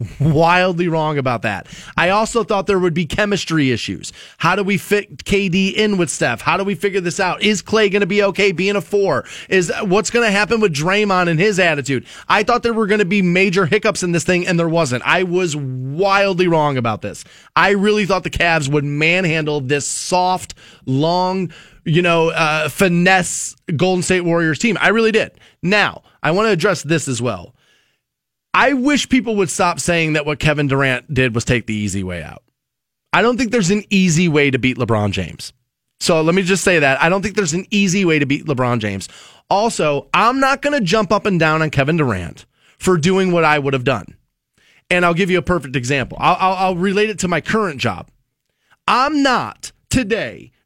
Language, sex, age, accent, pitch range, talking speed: English, male, 20-39, American, 150-200 Hz, 210 wpm